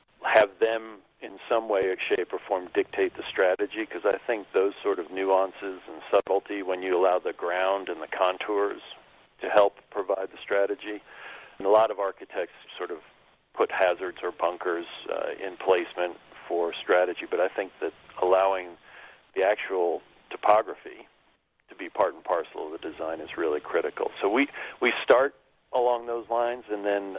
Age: 50-69